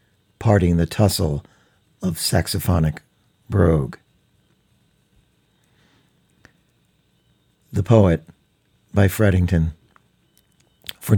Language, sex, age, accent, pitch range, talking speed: English, male, 50-69, American, 85-105 Hz, 60 wpm